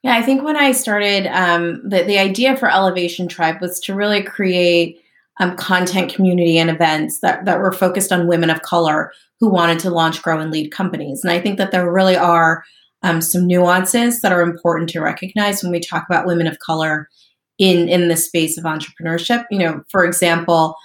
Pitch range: 170-195 Hz